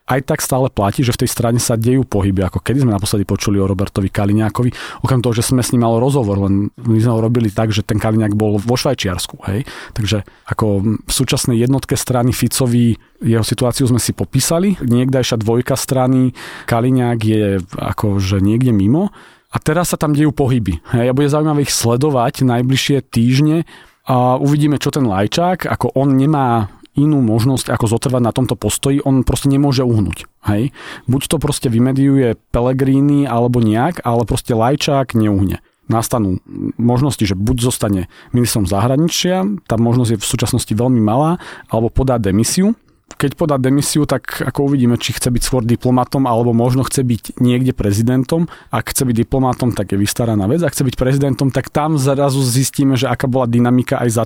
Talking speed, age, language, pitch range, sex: 175 wpm, 40-59, Slovak, 115-135 Hz, male